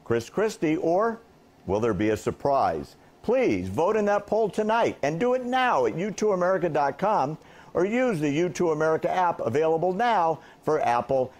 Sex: male